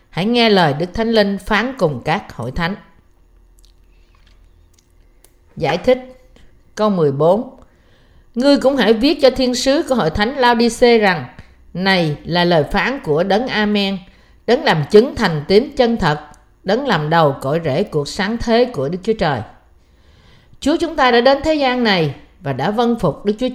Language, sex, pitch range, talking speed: Vietnamese, female, 155-235 Hz, 170 wpm